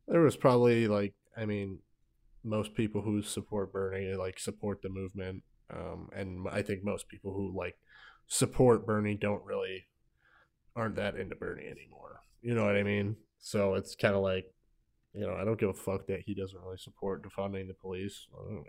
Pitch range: 95-110 Hz